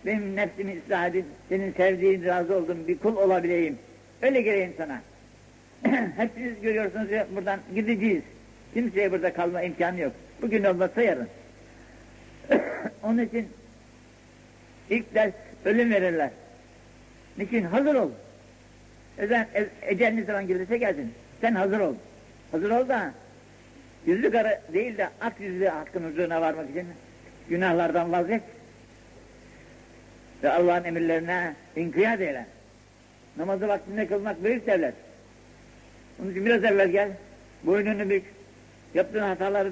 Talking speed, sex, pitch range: 120 wpm, male, 165-210 Hz